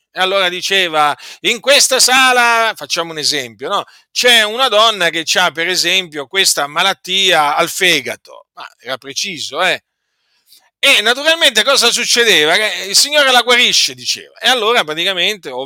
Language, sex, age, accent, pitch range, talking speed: Italian, male, 40-59, native, 145-210 Hz, 155 wpm